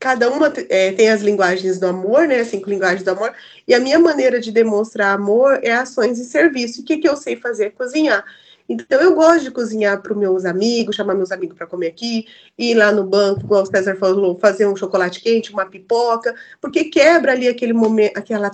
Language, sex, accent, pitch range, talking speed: Portuguese, female, Brazilian, 200-255 Hz, 220 wpm